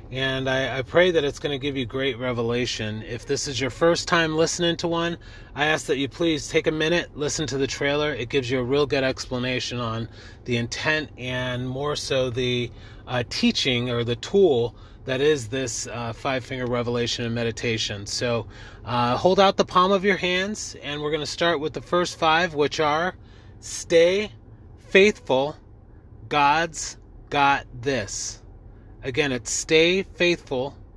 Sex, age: male, 30-49